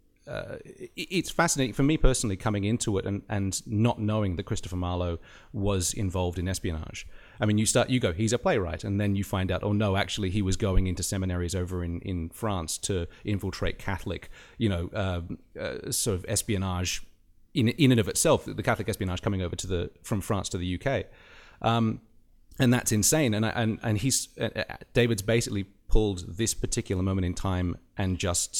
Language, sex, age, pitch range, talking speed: English, male, 30-49, 90-110 Hz, 195 wpm